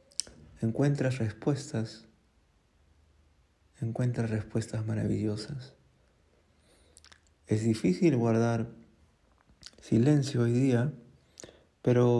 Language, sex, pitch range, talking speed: Spanish, male, 105-125 Hz, 60 wpm